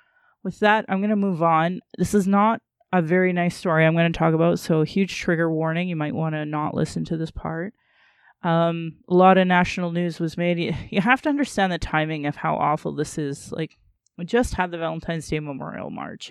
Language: English